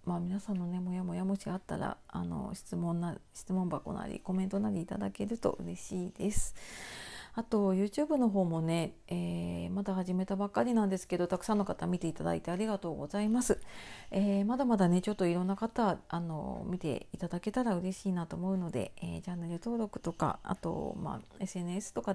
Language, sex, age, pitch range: Japanese, female, 40-59, 175-220 Hz